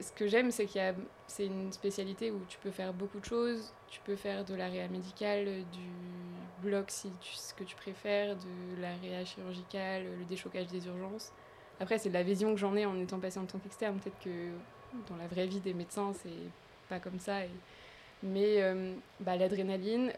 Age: 20-39